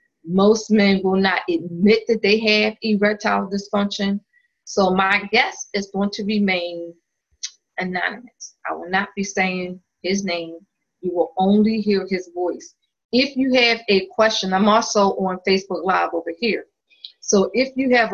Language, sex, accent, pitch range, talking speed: English, female, American, 185-230 Hz, 155 wpm